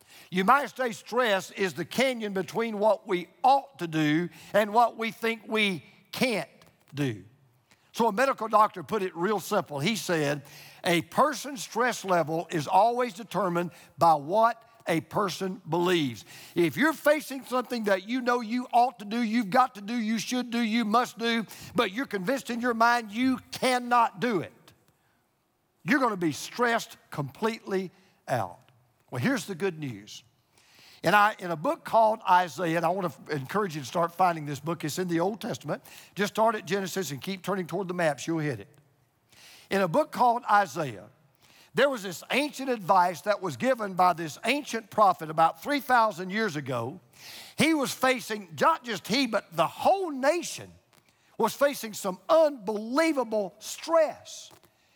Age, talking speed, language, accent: 50-69, 170 wpm, English, American